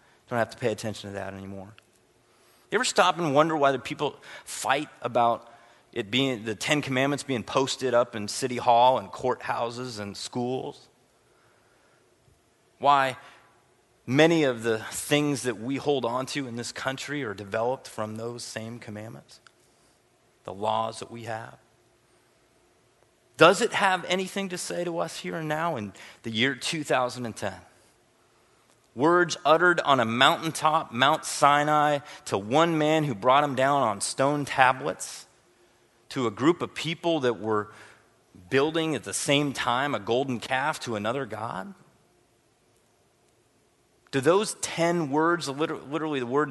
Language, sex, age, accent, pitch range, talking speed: English, male, 30-49, American, 115-150 Hz, 145 wpm